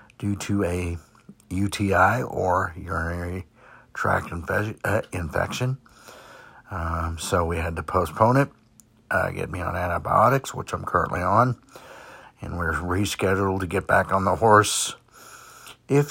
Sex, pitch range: male, 95-110 Hz